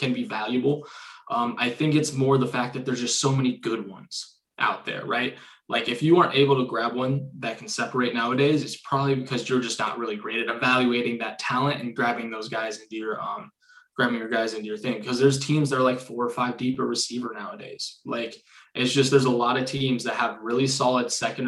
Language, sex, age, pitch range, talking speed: English, male, 20-39, 120-135 Hz, 230 wpm